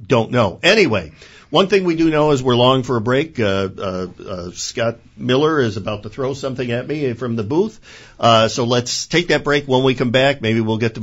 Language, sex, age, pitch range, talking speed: English, male, 50-69, 110-140 Hz, 235 wpm